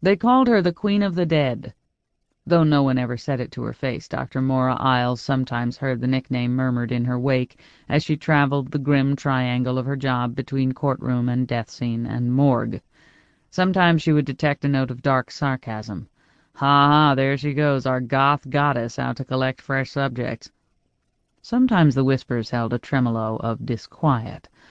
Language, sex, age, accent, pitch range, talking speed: English, female, 40-59, American, 130-165 Hz, 180 wpm